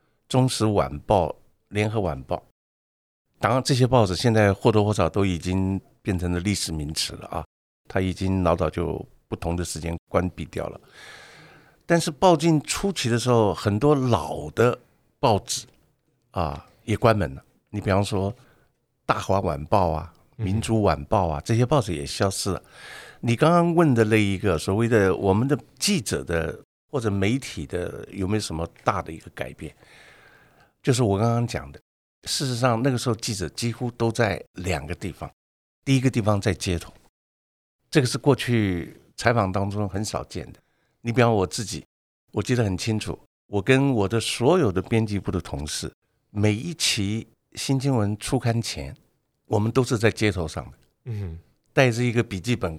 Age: 50-69